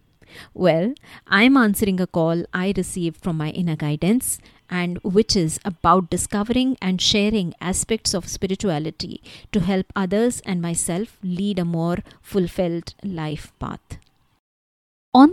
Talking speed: 135 wpm